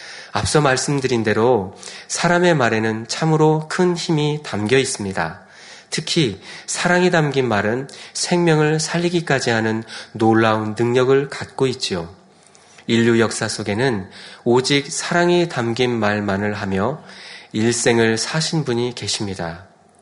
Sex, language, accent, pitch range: male, Korean, native, 110-150 Hz